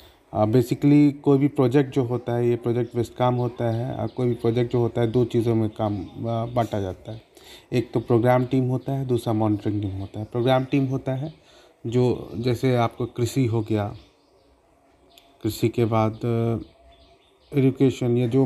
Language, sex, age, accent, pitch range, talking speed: Hindi, male, 30-49, native, 115-130 Hz, 175 wpm